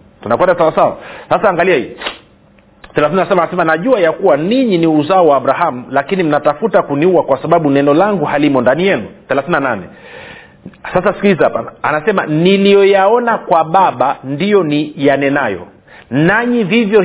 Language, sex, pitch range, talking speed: Swahili, male, 155-200 Hz, 135 wpm